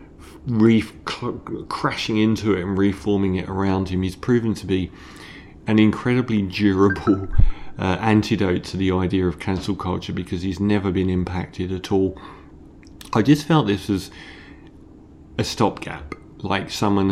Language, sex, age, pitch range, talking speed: English, male, 30-49, 95-110 Hz, 140 wpm